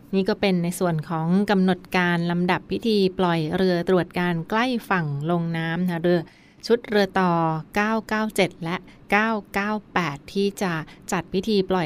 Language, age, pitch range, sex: Thai, 20-39, 170-200 Hz, female